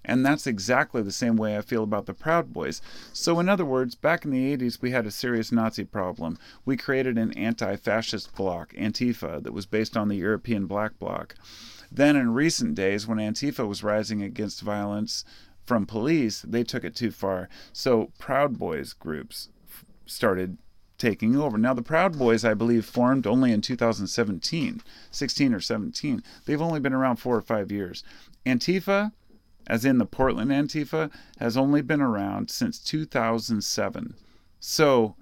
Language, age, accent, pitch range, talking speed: English, 30-49, American, 110-135 Hz, 165 wpm